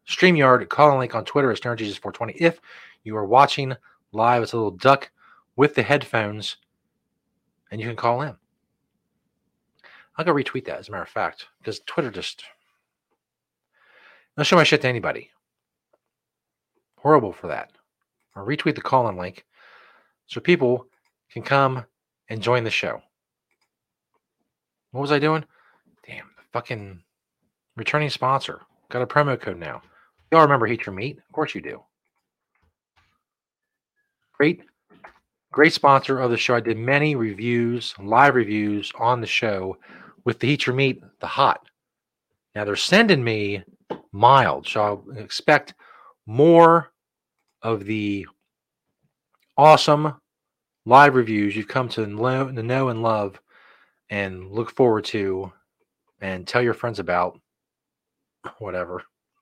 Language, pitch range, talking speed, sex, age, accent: English, 110-140 Hz, 135 wpm, male, 30-49, American